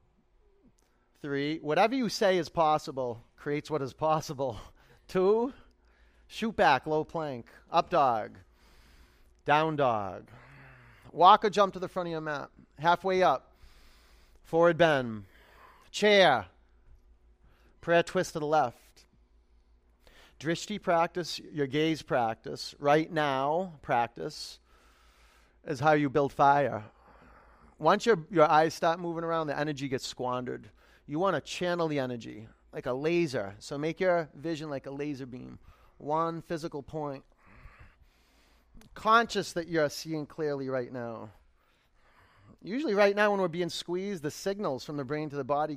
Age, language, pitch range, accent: 40-59, English, 120-165 Hz, American